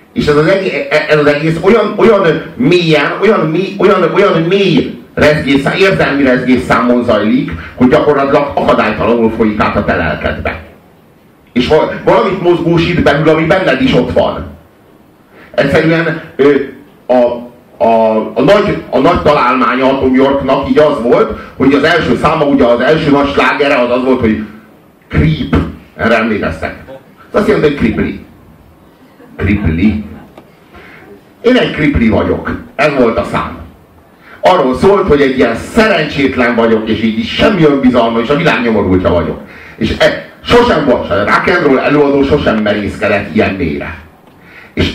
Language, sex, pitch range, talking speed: Hungarian, male, 105-150 Hz, 145 wpm